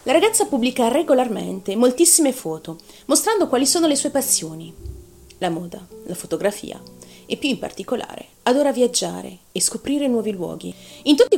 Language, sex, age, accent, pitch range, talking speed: Italian, female, 30-49, native, 180-270 Hz, 150 wpm